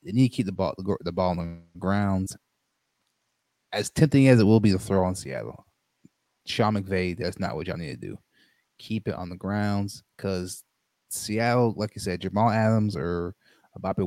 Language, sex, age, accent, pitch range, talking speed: English, male, 20-39, American, 95-110 Hz, 190 wpm